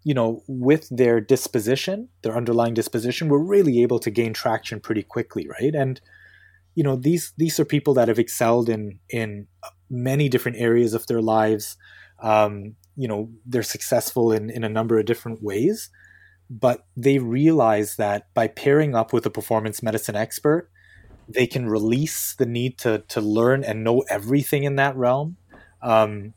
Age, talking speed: 20-39, 170 wpm